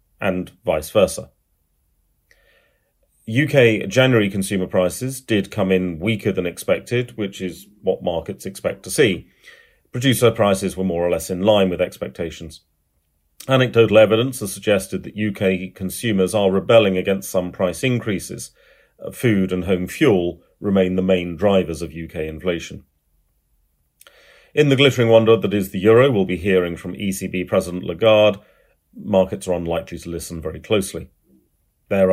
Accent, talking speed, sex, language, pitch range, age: British, 145 wpm, male, English, 85-110 Hz, 40-59